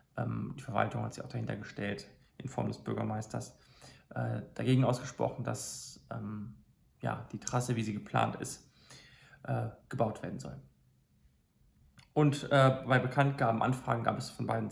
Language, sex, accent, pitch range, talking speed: German, male, German, 115-135 Hz, 125 wpm